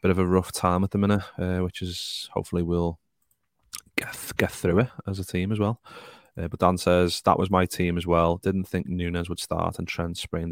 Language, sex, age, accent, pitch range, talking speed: English, male, 30-49, British, 85-90 Hz, 230 wpm